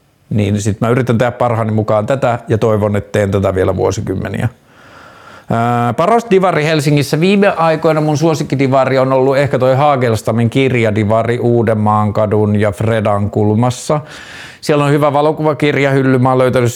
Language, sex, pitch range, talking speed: Finnish, male, 110-135 Hz, 145 wpm